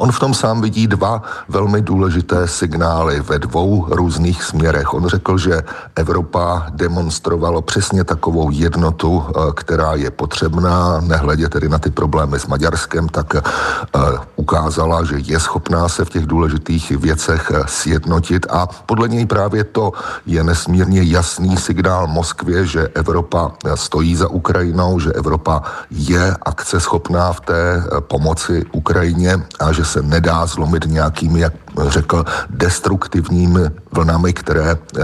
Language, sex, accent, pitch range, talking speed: Czech, male, native, 80-95 Hz, 130 wpm